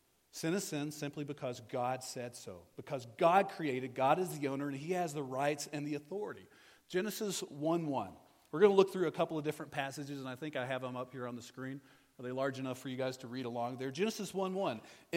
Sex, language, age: male, English, 40-59